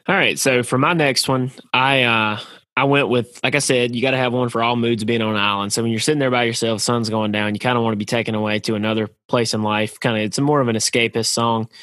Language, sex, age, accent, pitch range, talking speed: English, male, 20-39, American, 110-125 Hz, 295 wpm